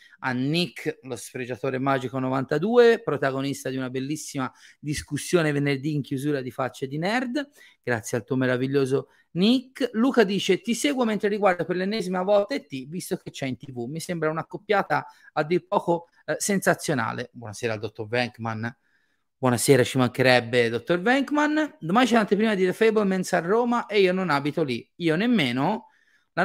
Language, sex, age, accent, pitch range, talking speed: Italian, male, 30-49, native, 130-185 Hz, 170 wpm